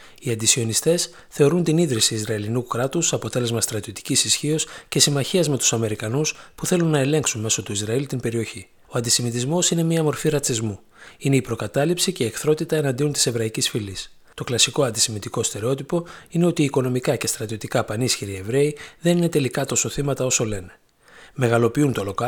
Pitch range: 115-150 Hz